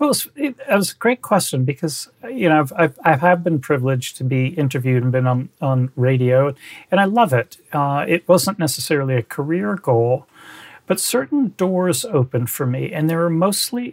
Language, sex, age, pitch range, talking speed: English, male, 40-59, 135-170 Hz, 180 wpm